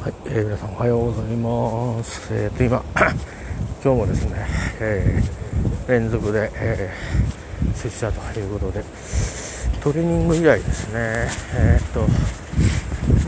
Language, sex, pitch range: Japanese, male, 85-115 Hz